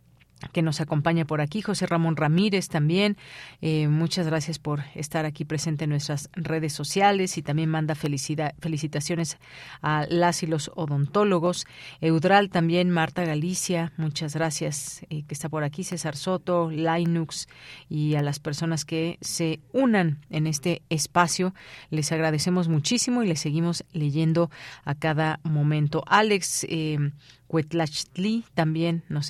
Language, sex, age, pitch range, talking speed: Spanish, female, 40-59, 155-190 Hz, 140 wpm